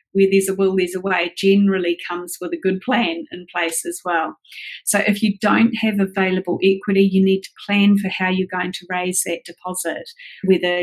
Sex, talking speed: female, 205 wpm